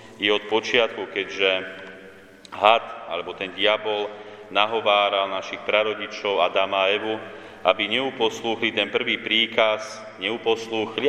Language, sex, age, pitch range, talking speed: Slovak, male, 30-49, 100-110 Hz, 110 wpm